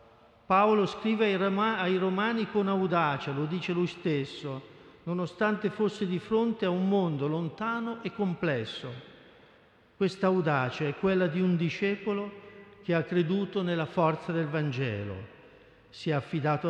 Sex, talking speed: male, 135 wpm